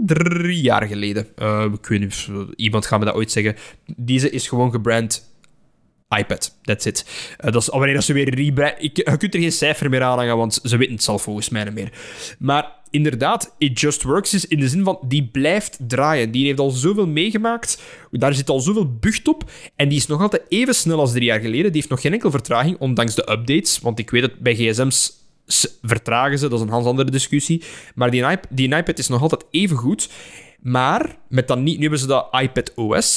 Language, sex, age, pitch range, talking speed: Dutch, male, 10-29, 115-150 Hz, 225 wpm